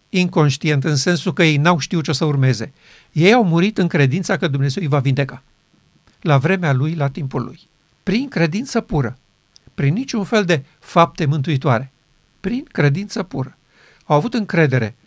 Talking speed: 165 wpm